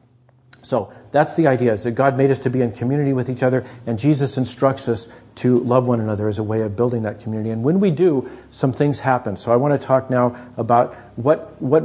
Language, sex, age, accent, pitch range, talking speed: English, male, 50-69, American, 120-145 Hz, 240 wpm